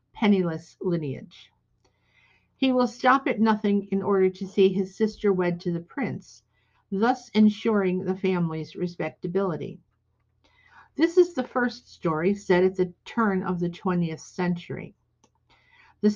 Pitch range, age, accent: 175-215 Hz, 50-69, American